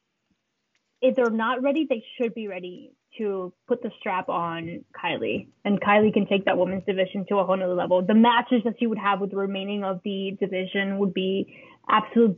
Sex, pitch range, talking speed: female, 200-235 Hz, 200 wpm